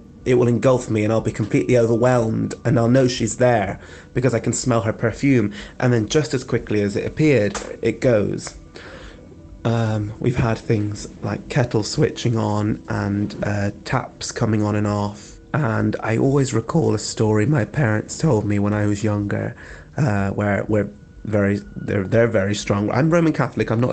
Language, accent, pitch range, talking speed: English, British, 105-120 Hz, 180 wpm